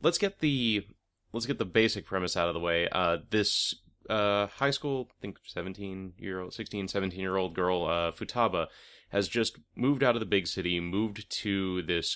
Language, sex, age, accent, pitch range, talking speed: English, male, 30-49, American, 85-105 Hz, 195 wpm